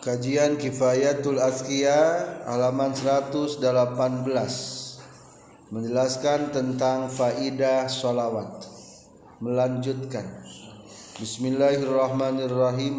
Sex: male